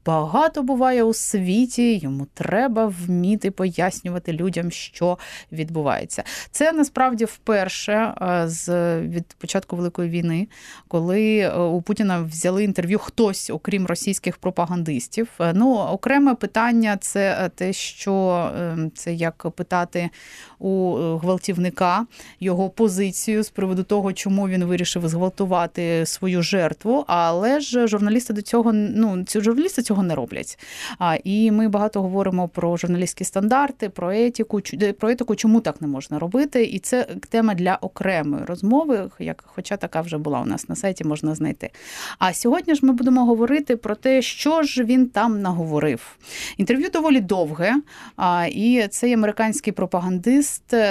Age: 20-39